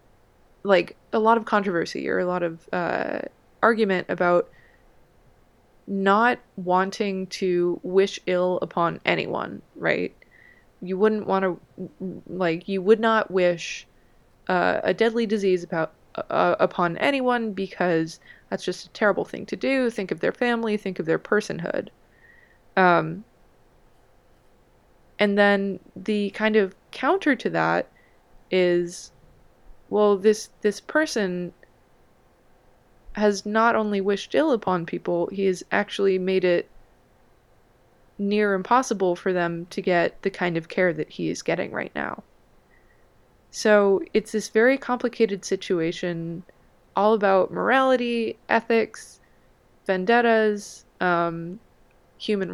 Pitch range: 180-220 Hz